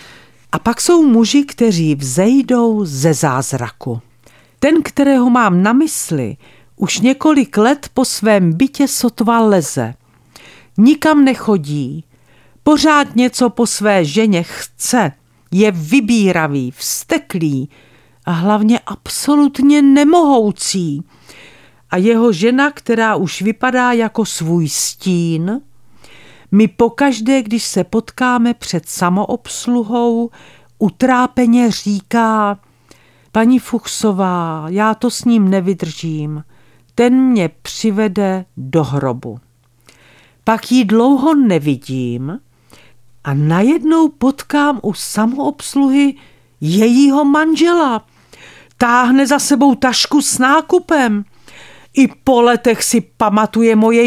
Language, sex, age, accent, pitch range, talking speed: Czech, female, 50-69, native, 170-255 Hz, 100 wpm